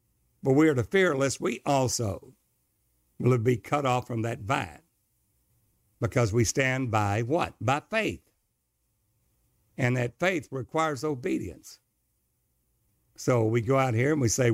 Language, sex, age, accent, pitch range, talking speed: English, male, 60-79, American, 120-155 Hz, 145 wpm